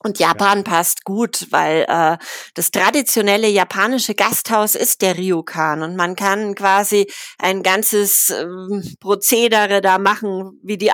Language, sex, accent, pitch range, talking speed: German, female, German, 190-220 Hz, 135 wpm